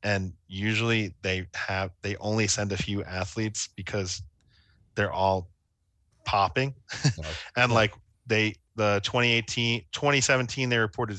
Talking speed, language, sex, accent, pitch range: 120 wpm, English, male, American, 90-110 Hz